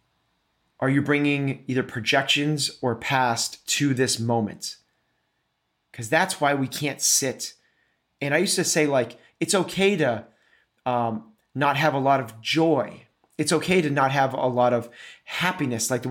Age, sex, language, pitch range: 30-49, male, English, 120-150 Hz